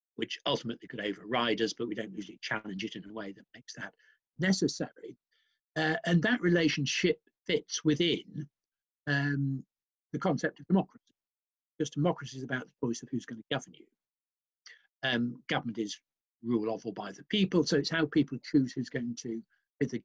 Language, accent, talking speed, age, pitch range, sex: English, British, 180 wpm, 50-69, 120-175 Hz, male